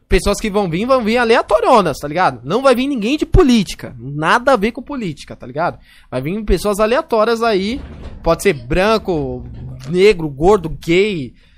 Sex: male